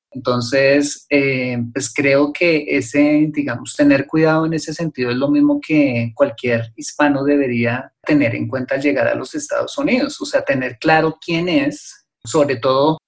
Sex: male